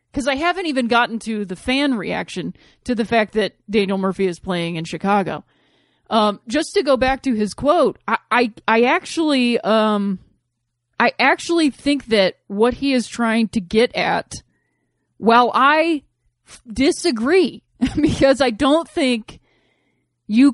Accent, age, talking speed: American, 30-49, 150 wpm